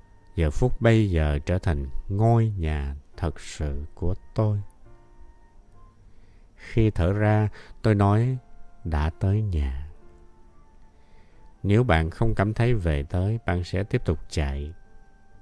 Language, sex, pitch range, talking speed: Vietnamese, male, 85-110 Hz, 125 wpm